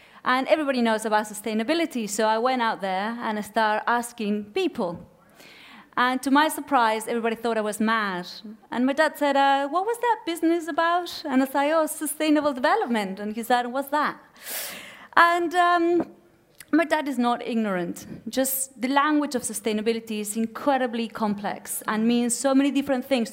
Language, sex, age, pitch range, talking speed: English, female, 30-49, 215-285 Hz, 170 wpm